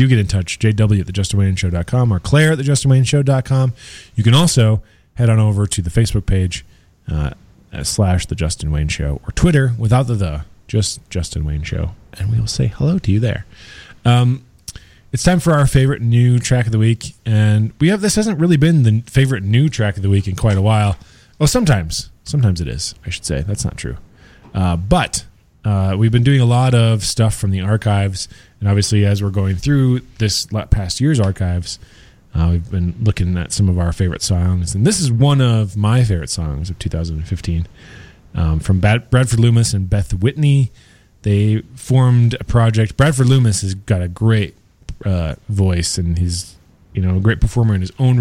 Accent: American